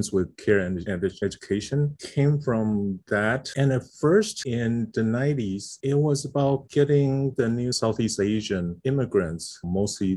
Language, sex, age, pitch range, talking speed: English, male, 30-49, 90-110 Hz, 135 wpm